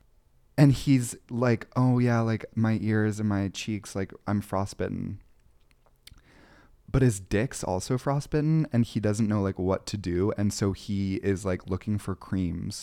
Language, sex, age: English, male, 20-39